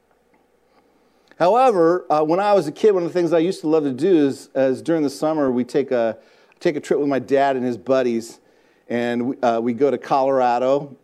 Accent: American